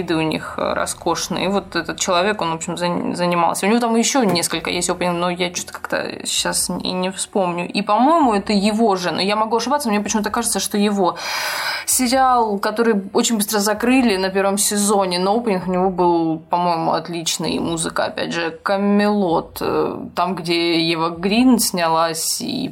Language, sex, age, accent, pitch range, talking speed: Russian, female, 20-39, native, 175-215 Hz, 175 wpm